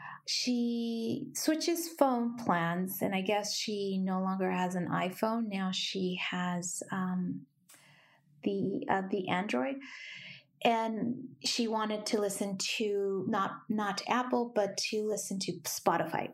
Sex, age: female, 30-49